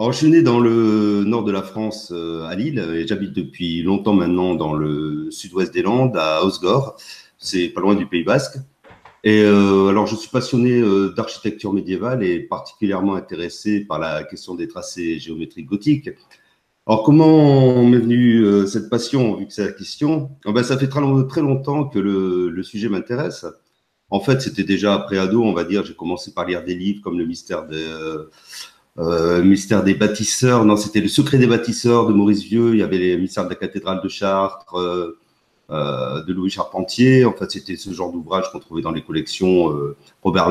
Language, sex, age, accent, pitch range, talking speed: French, male, 40-59, French, 95-120 Hz, 195 wpm